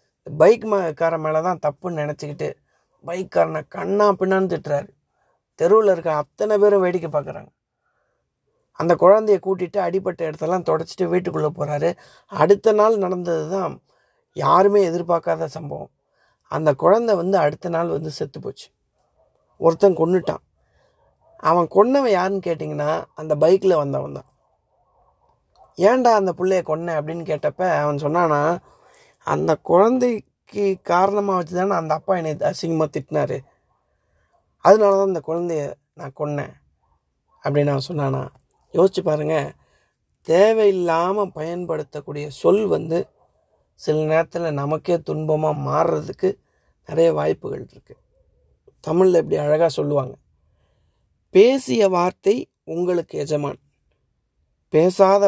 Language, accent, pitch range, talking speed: Tamil, native, 150-190 Hz, 105 wpm